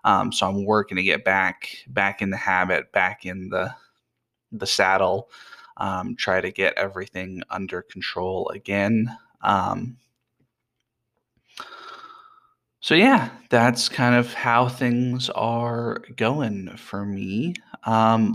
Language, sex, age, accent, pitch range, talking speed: English, male, 20-39, American, 100-125 Hz, 120 wpm